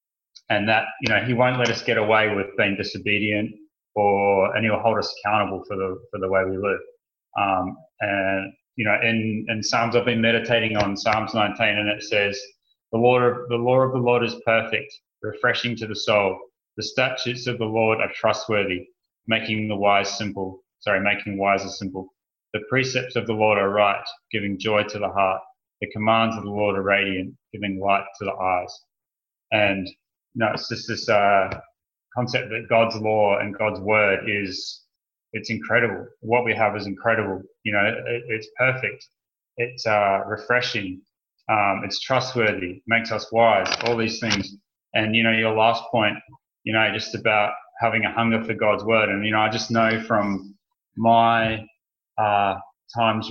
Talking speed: 180 wpm